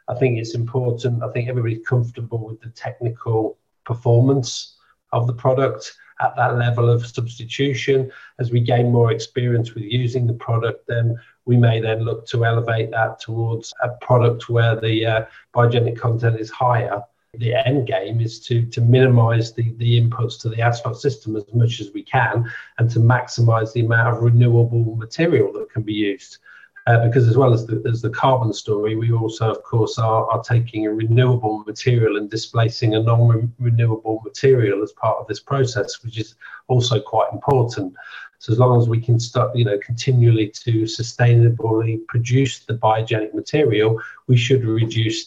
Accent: British